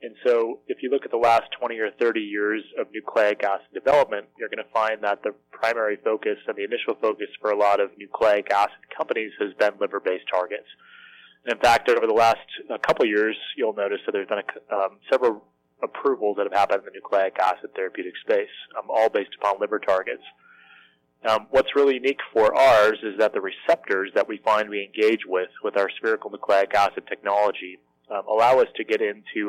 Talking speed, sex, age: 205 wpm, male, 30-49